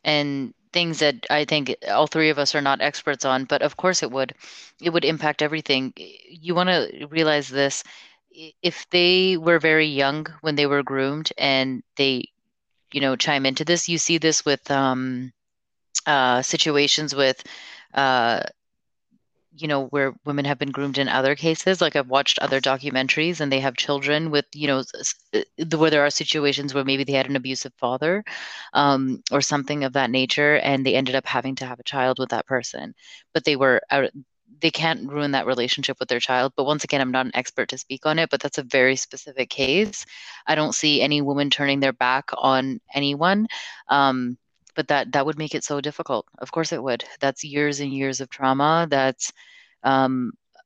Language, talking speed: English, 190 wpm